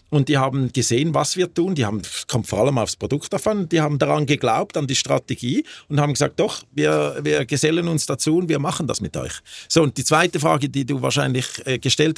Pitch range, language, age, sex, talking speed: 115-150 Hz, German, 40-59, male, 230 wpm